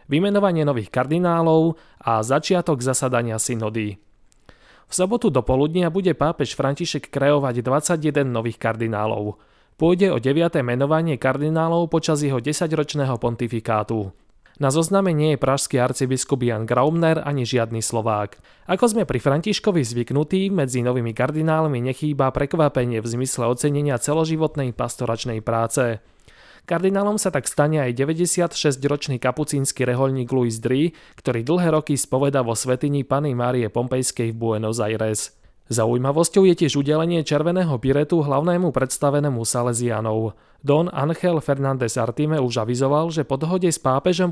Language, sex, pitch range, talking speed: Slovak, male, 125-160 Hz, 130 wpm